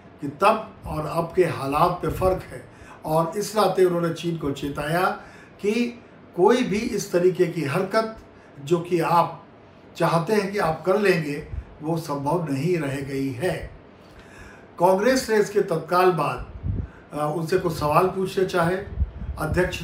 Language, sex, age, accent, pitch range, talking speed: Hindi, male, 50-69, native, 150-185 Hz, 150 wpm